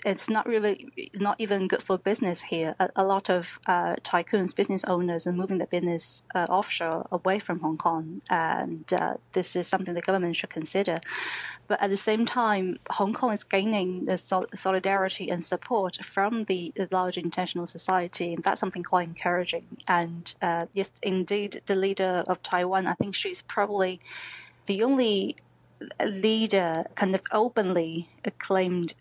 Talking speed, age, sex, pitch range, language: 160 wpm, 20-39, female, 170-195 Hz, English